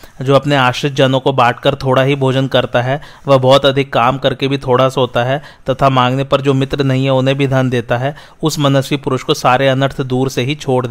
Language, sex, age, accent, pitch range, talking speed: Hindi, male, 30-49, native, 125-140 Hz, 230 wpm